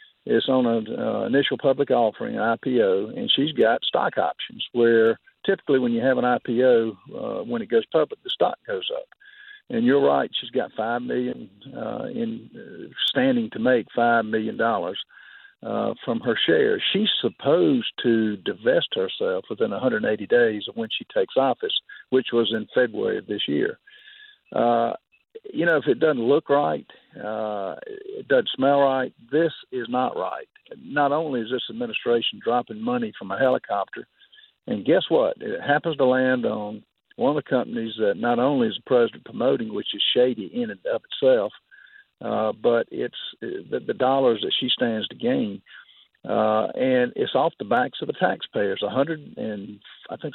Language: English